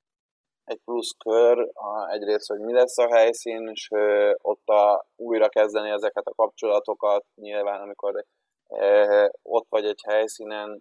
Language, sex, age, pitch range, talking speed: Hungarian, male, 20-39, 105-115 Hz, 130 wpm